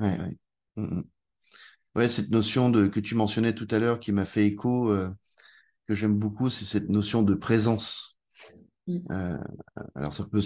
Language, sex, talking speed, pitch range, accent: French, male, 165 wpm, 100-125 Hz, French